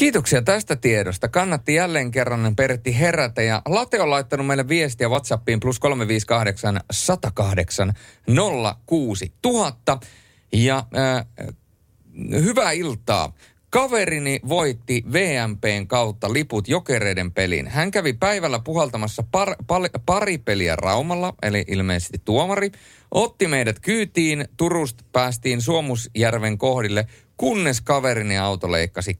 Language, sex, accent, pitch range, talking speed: Finnish, male, native, 105-140 Hz, 110 wpm